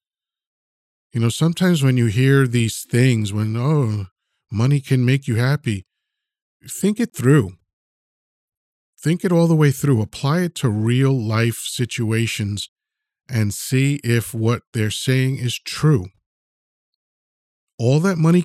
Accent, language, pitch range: American, English, 110-140 Hz